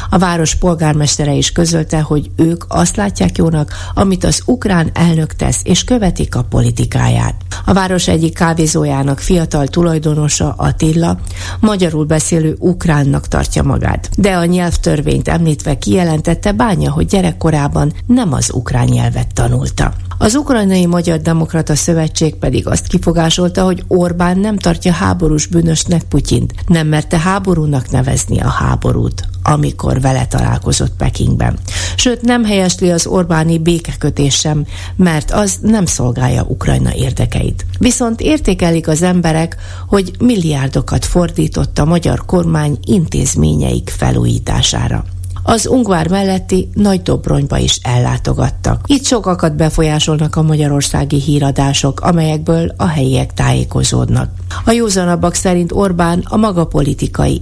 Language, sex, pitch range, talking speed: Hungarian, female, 120-175 Hz, 125 wpm